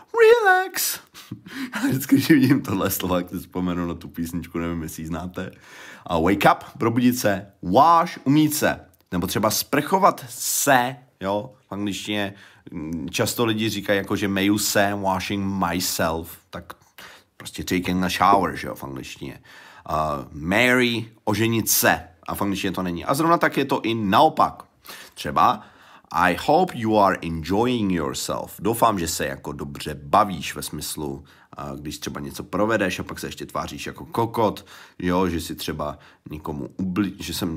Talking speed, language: 160 wpm, Czech